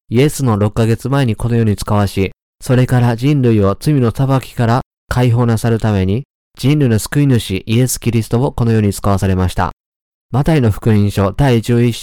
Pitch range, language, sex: 100-125 Hz, Japanese, male